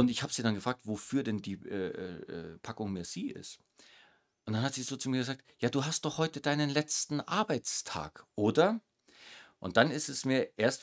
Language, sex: German, male